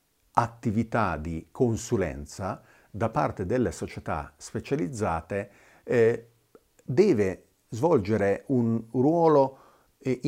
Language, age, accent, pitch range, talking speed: Italian, 50-69, native, 90-120 Hz, 80 wpm